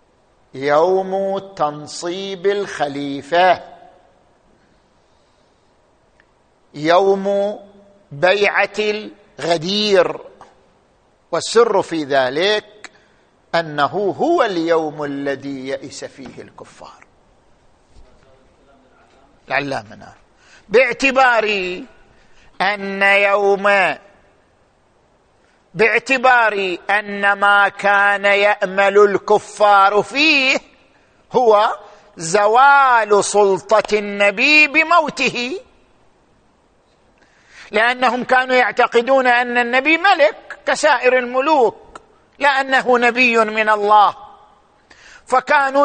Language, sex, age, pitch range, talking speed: Arabic, male, 50-69, 195-255 Hz, 60 wpm